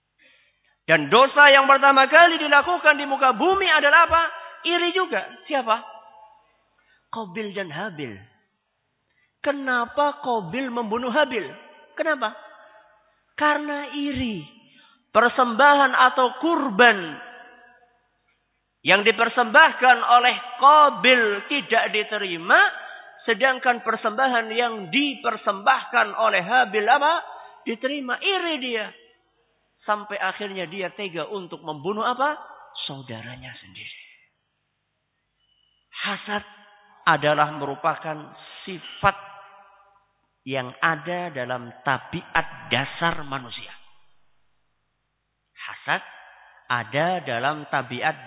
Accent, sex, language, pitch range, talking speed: Indonesian, male, English, 165-275 Hz, 80 wpm